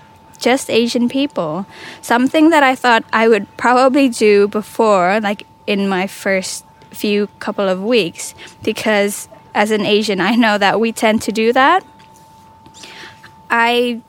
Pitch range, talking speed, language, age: 205-245 Hz, 140 wpm, English, 10-29